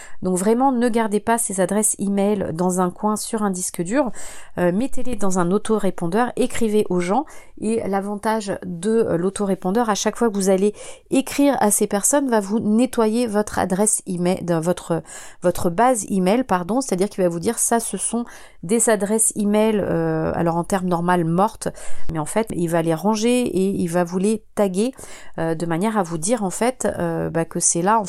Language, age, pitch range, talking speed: French, 30-49, 180-220 Hz, 195 wpm